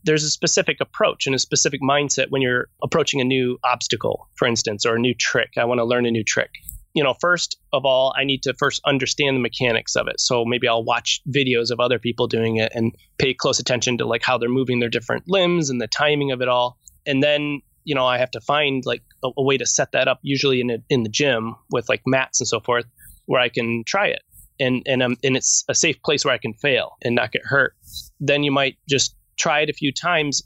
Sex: male